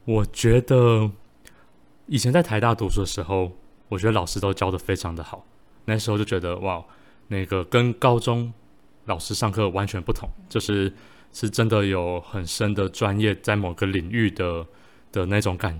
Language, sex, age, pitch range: Chinese, male, 20-39, 95-115 Hz